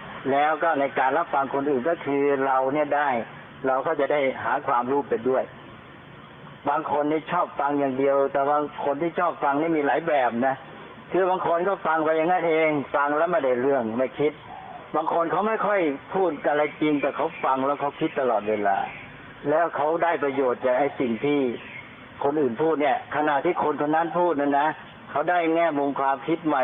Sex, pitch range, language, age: male, 135-160 Hz, Thai, 60-79